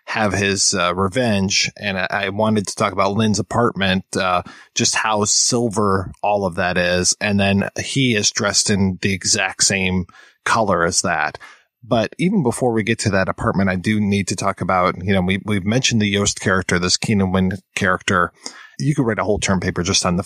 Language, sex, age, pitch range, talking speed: English, male, 20-39, 100-120 Hz, 205 wpm